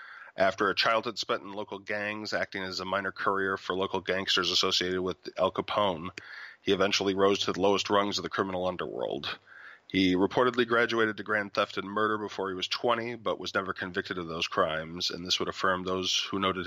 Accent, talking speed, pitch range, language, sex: American, 200 wpm, 95-110 Hz, English, male